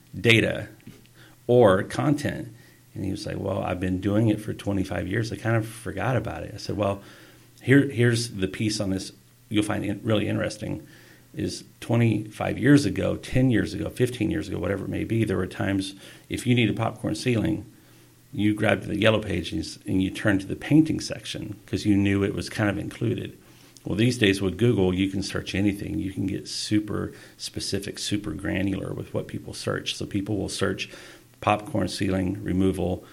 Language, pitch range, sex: English, 95-115 Hz, male